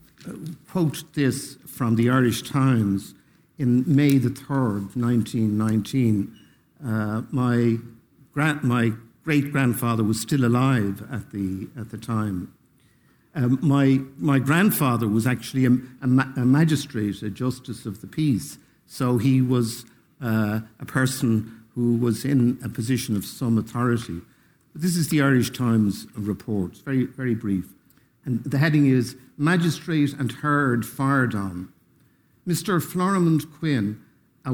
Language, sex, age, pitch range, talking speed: English, male, 60-79, 115-140 Hz, 140 wpm